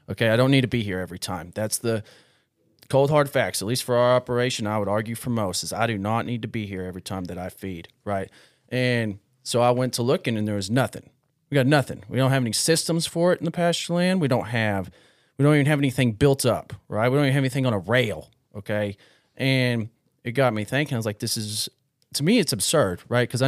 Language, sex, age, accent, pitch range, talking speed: English, male, 30-49, American, 105-135 Hz, 250 wpm